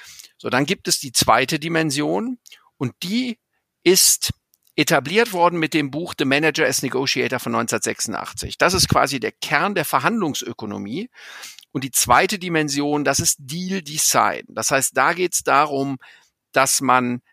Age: 50-69